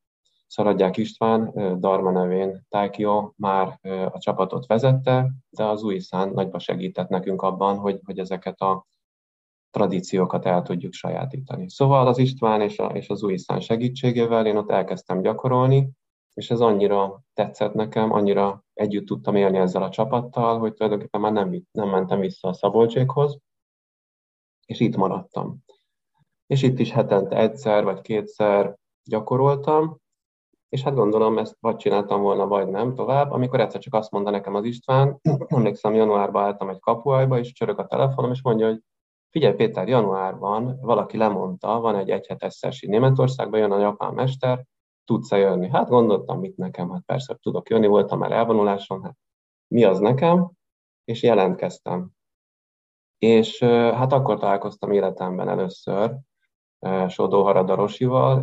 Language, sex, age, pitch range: Hungarian, male, 20-39, 100-125 Hz